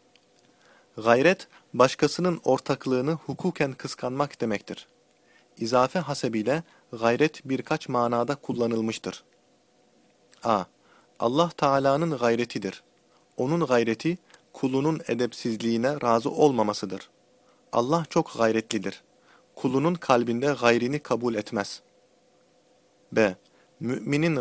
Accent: native